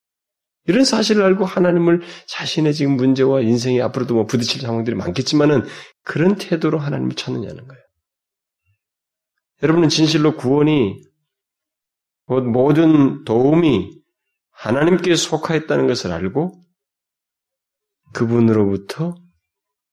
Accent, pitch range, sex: native, 110-180 Hz, male